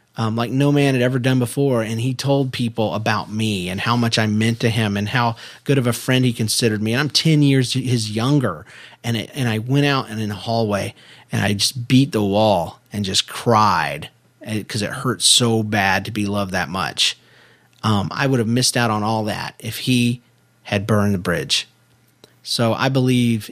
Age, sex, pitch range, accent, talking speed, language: 40-59, male, 115-145 Hz, American, 210 wpm, English